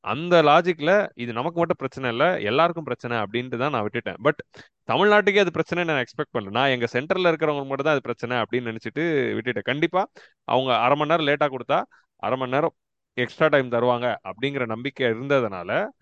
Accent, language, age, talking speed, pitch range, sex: native, Tamil, 30-49, 175 wpm, 120-155 Hz, male